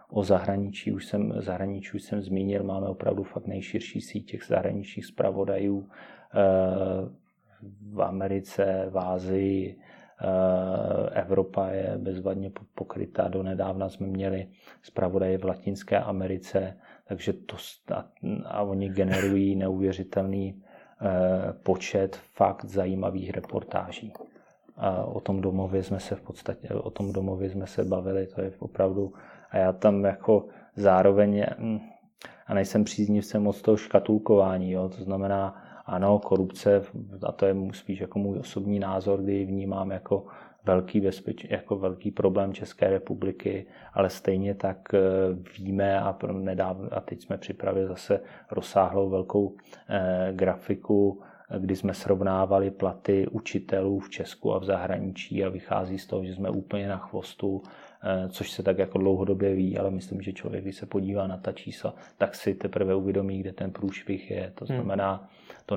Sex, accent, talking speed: male, native, 140 wpm